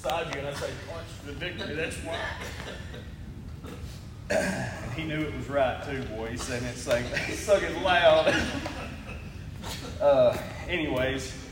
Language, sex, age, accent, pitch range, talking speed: English, male, 30-49, American, 100-130 Hz, 125 wpm